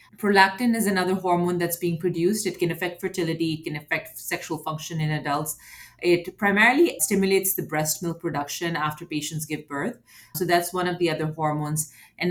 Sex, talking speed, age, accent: female, 180 wpm, 30-49, Indian